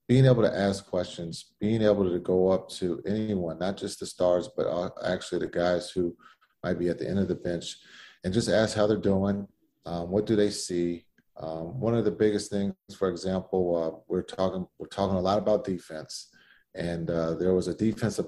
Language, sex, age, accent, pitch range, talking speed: English, male, 40-59, American, 90-105 Hz, 205 wpm